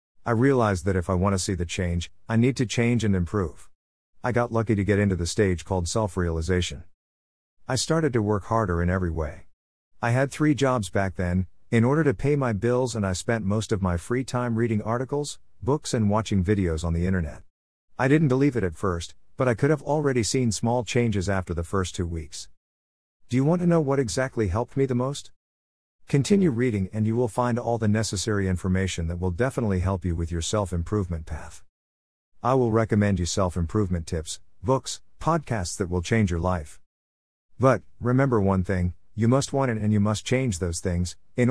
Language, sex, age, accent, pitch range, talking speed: English, male, 50-69, American, 85-125 Hz, 200 wpm